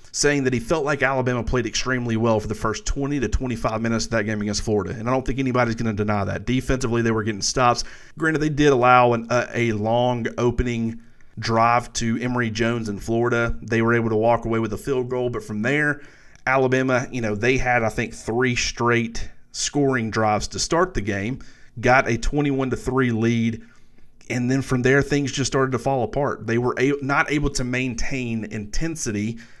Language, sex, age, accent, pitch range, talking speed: English, male, 30-49, American, 115-130 Hz, 205 wpm